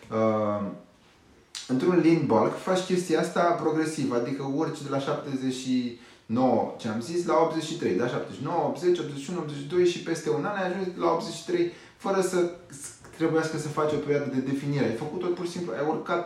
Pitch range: 120-175 Hz